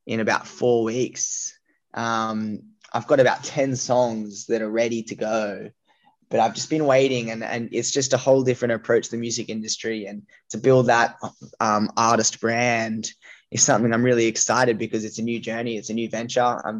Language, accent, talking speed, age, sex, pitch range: English, Australian, 195 wpm, 10-29, male, 110-125 Hz